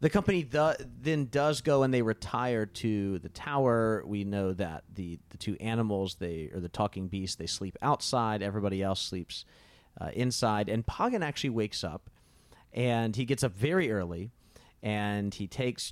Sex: male